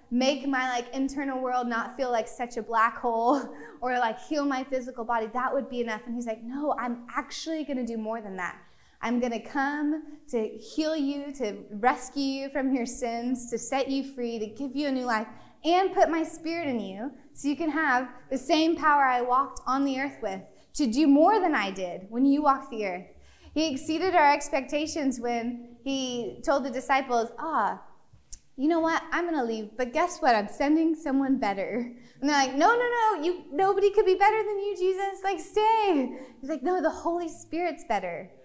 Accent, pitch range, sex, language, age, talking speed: American, 240-305 Hz, female, English, 20-39, 210 wpm